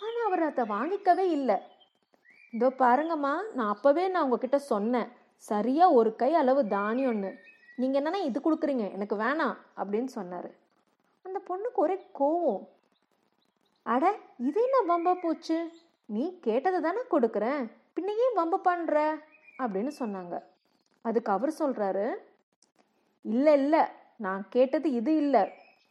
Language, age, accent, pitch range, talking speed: Tamil, 30-49, native, 210-310 Hz, 115 wpm